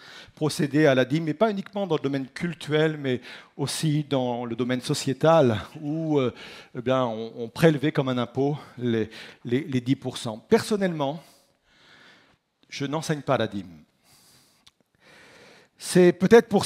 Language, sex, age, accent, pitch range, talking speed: French, male, 50-69, French, 145-210 Hz, 145 wpm